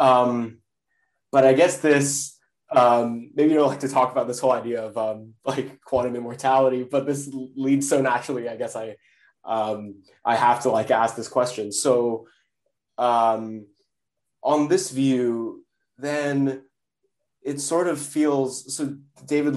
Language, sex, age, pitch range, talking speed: English, male, 20-39, 110-135 Hz, 155 wpm